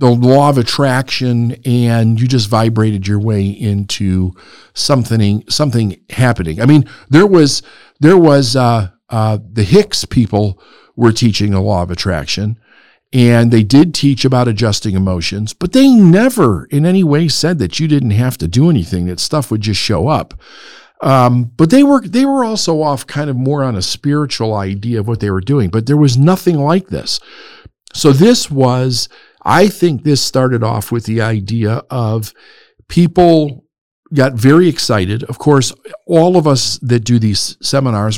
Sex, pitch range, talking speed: male, 110-145 Hz, 170 wpm